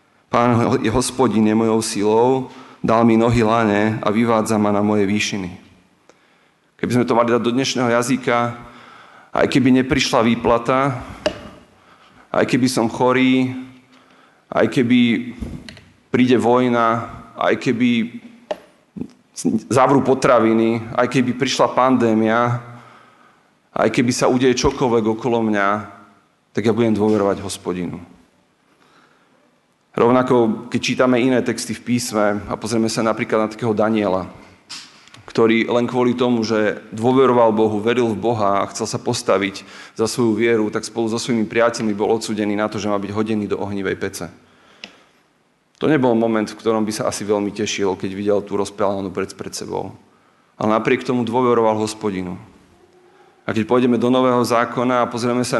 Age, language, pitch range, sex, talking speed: 40-59, Slovak, 110-125 Hz, male, 140 wpm